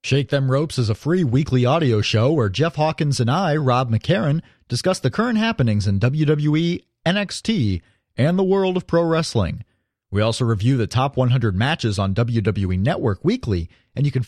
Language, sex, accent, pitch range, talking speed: English, male, American, 115-180 Hz, 180 wpm